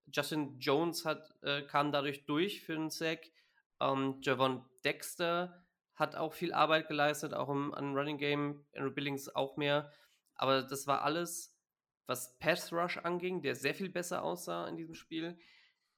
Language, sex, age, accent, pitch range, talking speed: German, male, 20-39, German, 135-155 Hz, 160 wpm